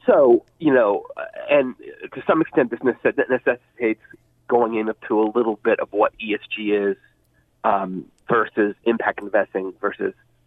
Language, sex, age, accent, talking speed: English, male, 40-59, American, 130 wpm